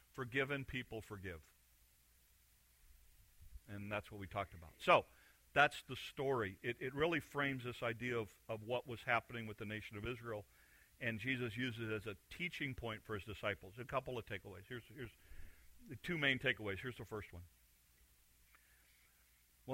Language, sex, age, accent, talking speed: English, male, 50-69, American, 165 wpm